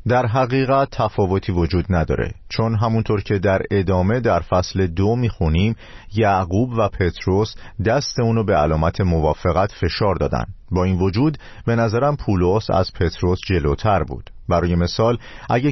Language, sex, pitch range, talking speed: Persian, male, 90-120 Hz, 140 wpm